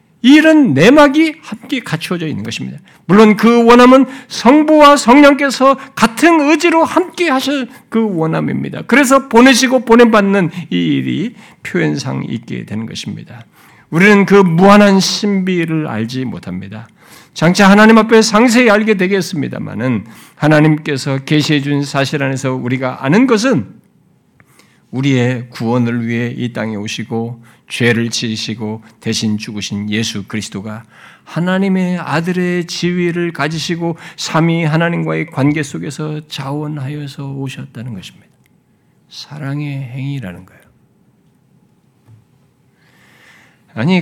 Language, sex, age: Korean, male, 50-69